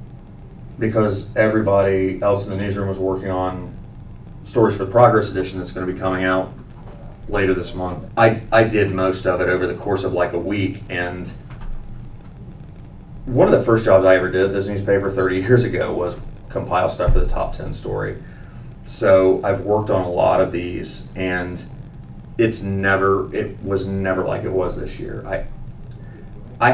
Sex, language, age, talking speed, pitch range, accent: male, English, 30-49, 175 wpm, 95-110 Hz, American